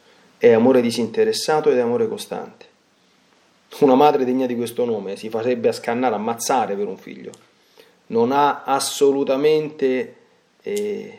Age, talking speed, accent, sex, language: 40-59, 135 wpm, native, male, Italian